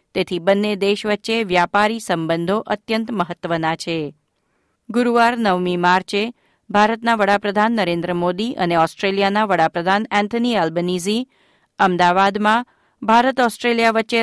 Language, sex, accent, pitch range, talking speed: Gujarati, female, native, 180-225 Hz, 105 wpm